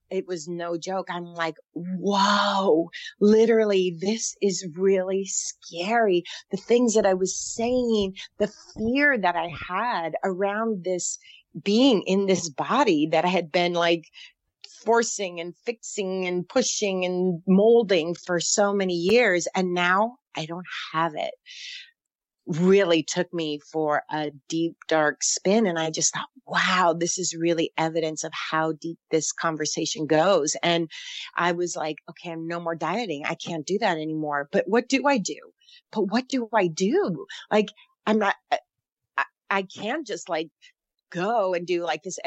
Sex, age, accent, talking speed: female, 30-49, American, 160 wpm